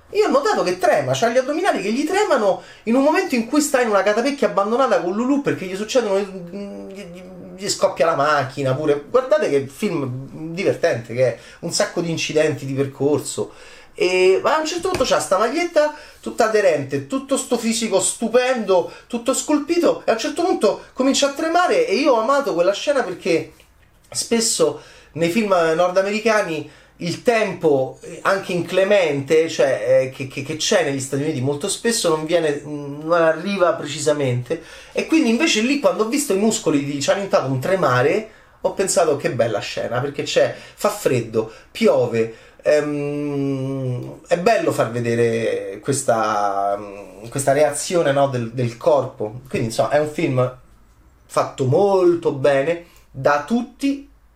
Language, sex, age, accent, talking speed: Italian, male, 30-49, native, 160 wpm